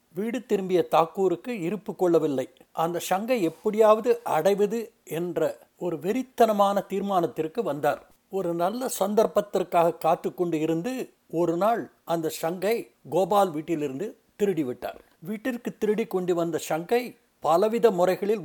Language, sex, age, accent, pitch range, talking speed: Tamil, male, 60-79, native, 170-215 Hz, 110 wpm